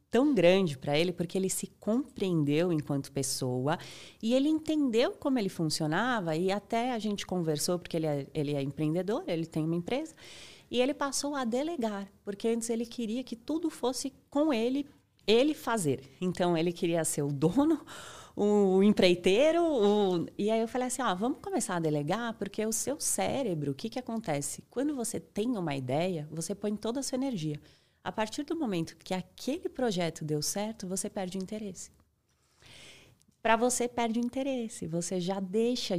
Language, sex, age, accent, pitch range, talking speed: Portuguese, female, 30-49, Brazilian, 165-245 Hz, 175 wpm